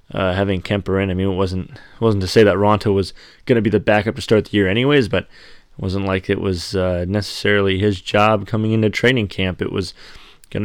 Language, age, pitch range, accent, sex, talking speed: English, 20-39, 95-110 Hz, American, male, 230 wpm